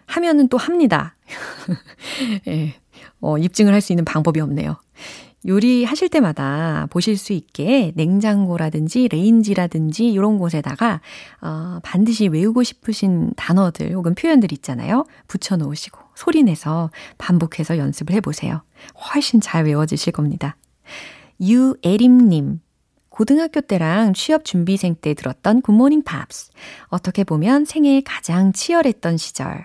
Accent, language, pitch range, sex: native, Korean, 160-250 Hz, female